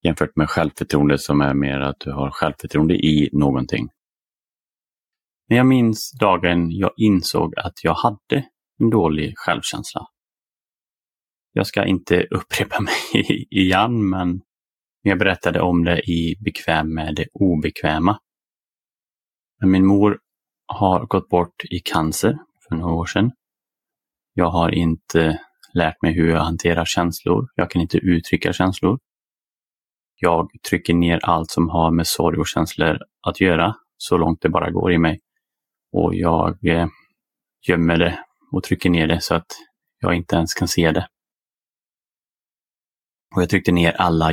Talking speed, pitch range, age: 140 wpm, 80-95 Hz, 30-49